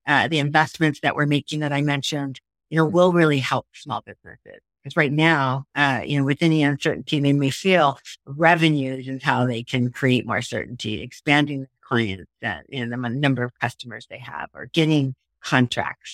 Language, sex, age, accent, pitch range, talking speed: English, female, 50-69, American, 125-150 Hz, 205 wpm